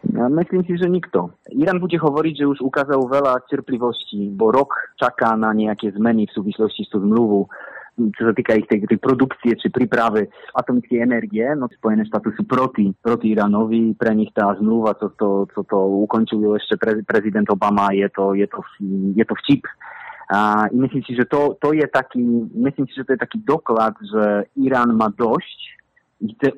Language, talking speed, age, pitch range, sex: Slovak, 155 wpm, 30-49, 105-135 Hz, male